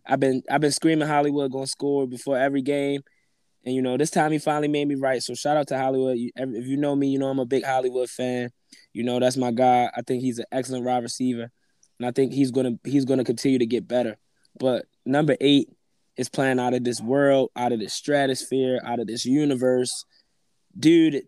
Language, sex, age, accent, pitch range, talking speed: English, male, 20-39, American, 125-145 Hz, 220 wpm